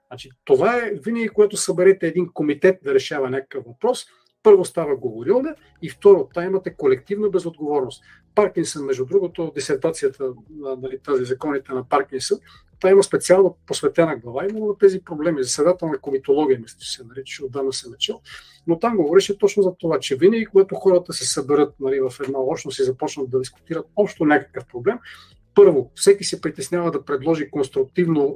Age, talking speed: 40-59, 165 wpm